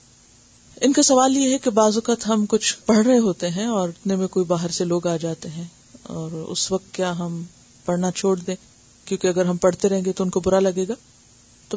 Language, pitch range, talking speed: Urdu, 185-235 Hz, 230 wpm